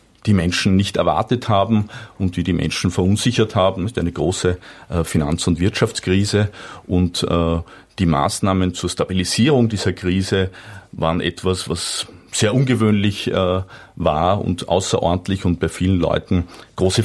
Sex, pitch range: male, 90-110 Hz